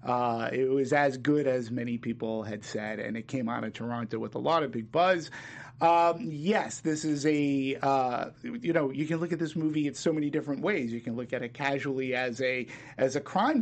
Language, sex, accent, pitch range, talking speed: English, male, American, 125-155 Hz, 230 wpm